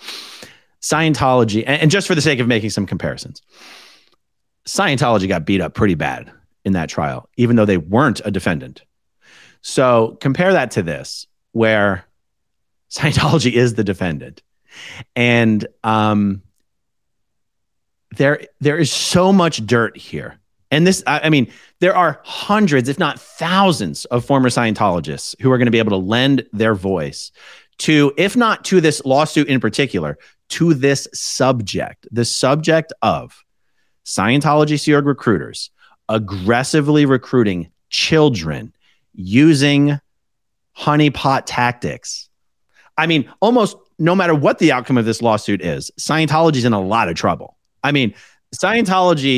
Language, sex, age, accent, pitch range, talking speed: English, male, 30-49, American, 105-150 Hz, 135 wpm